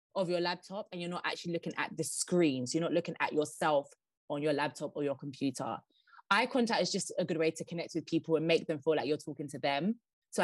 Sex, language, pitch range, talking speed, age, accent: female, English, 165-210 Hz, 255 wpm, 20-39, British